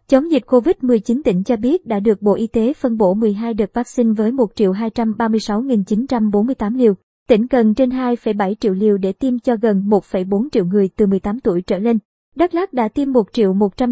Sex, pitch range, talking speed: male, 210-255 Hz, 175 wpm